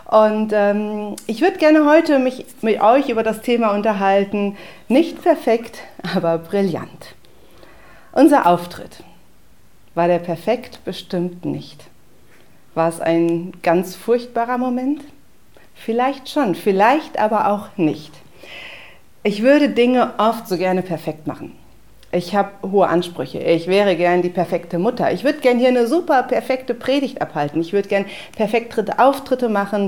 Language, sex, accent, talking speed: German, female, German, 140 wpm